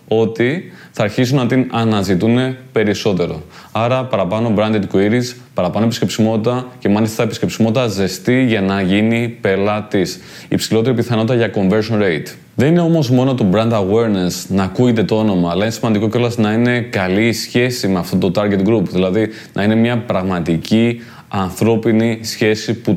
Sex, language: male, Greek